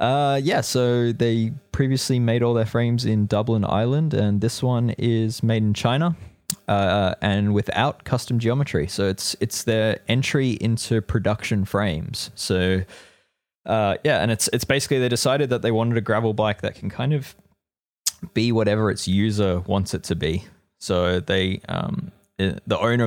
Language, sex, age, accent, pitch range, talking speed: English, male, 20-39, Australian, 95-115 Hz, 165 wpm